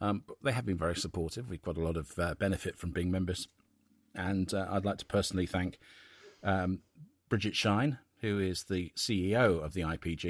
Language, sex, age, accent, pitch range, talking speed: English, male, 40-59, British, 80-95 Hz, 190 wpm